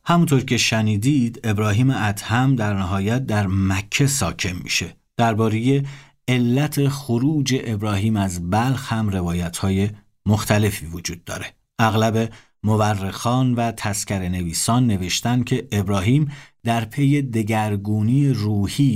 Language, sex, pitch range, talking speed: Persian, male, 95-125 Hz, 110 wpm